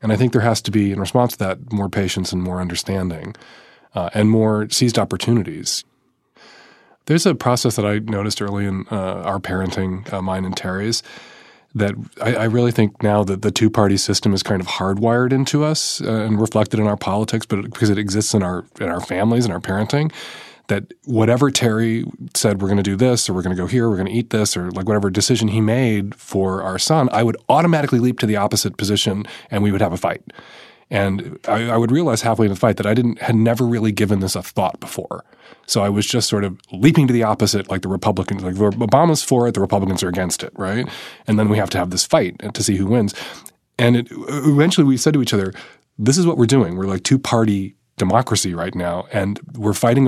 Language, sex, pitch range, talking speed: English, male, 100-120 Hz, 235 wpm